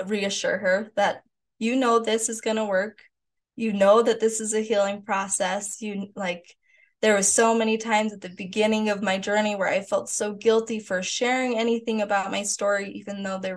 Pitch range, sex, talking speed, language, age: 185-225 Hz, female, 200 wpm, English, 20-39